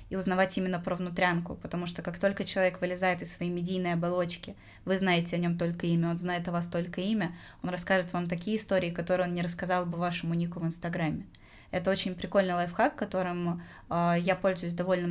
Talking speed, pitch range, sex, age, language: 200 wpm, 175-190 Hz, female, 20-39, Russian